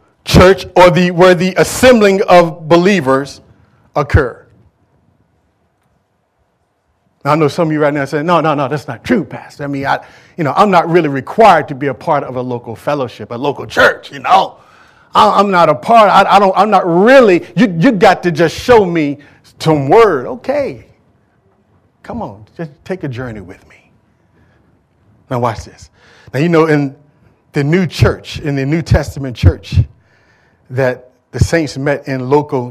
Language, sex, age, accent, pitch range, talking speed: English, male, 40-59, American, 115-170 Hz, 180 wpm